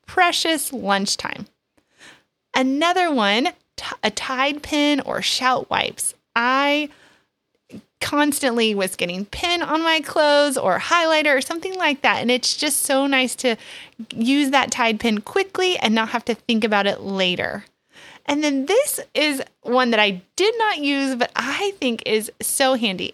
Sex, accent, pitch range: female, American, 225-315 Hz